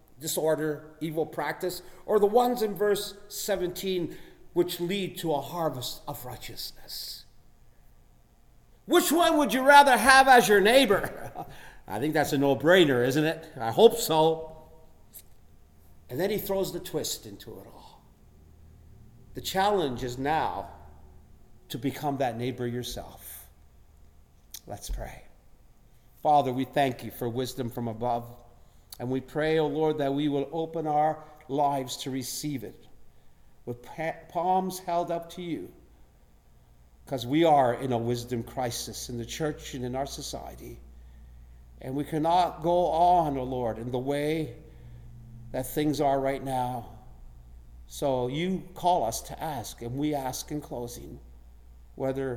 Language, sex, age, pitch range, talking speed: English, male, 50-69, 115-160 Hz, 140 wpm